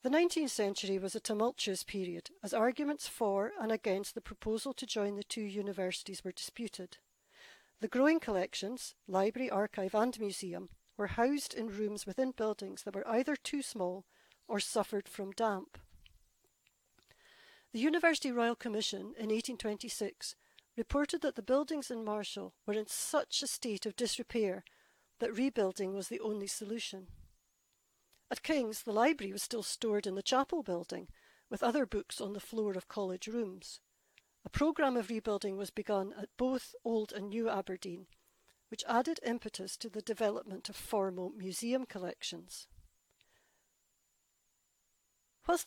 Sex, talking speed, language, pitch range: female, 145 wpm, English, 195-240 Hz